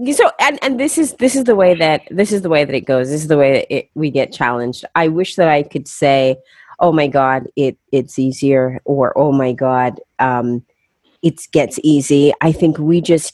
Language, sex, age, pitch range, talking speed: English, female, 30-49, 140-175 Hz, 225 wpm